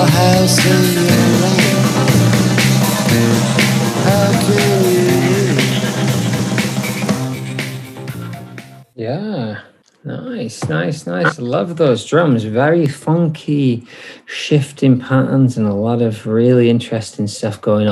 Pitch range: 100-125 Hz